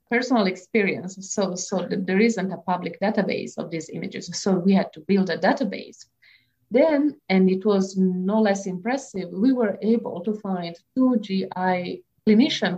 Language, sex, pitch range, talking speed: English, female, 180-220 Hz, 160 wpm